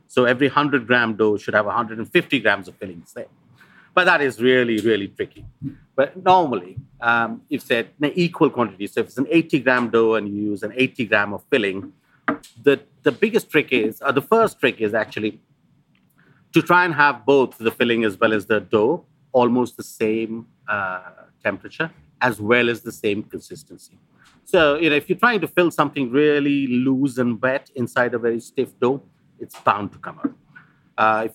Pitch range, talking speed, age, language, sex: 110-145 Hz, 190 wpm, 50-69, English, male